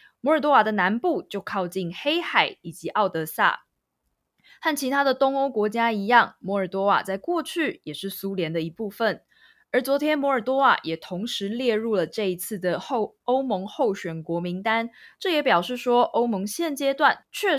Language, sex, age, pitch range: Chinese, female, 20-39, 185-250 Hz